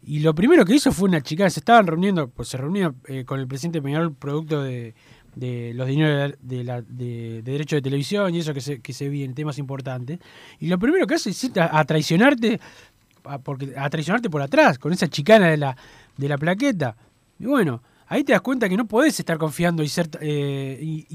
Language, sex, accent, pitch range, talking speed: Spanish, male, Argentinian, 140-195 Hz, 225 wpm